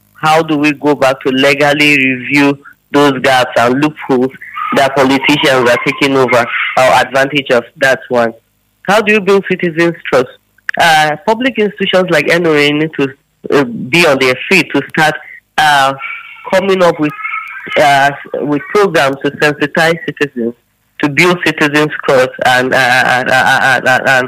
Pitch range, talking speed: 140-180 Hz, 150 wpm